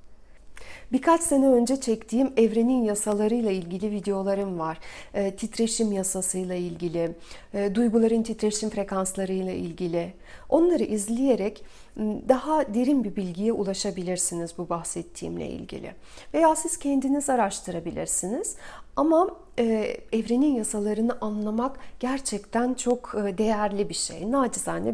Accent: native